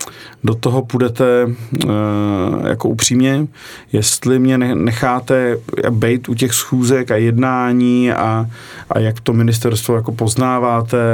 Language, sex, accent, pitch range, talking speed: Czech, male, native, 110-130 Hz, 120 wpm